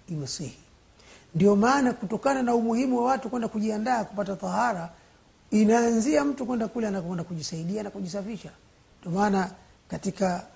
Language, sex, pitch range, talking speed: Swahili, male, 170-225 Hz, 130 wpm